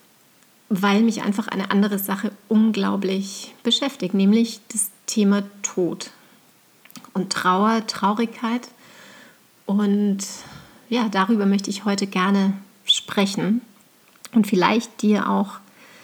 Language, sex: German, female